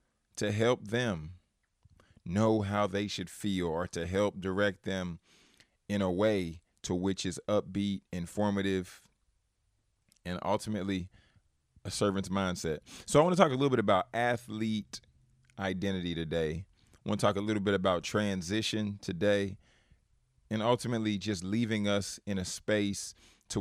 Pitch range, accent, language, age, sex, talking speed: 90-105 Hz, American, English, 30-49, male, 140 wpm